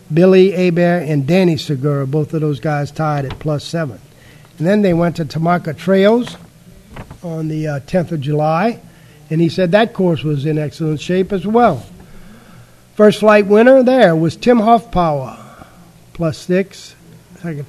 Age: 50-69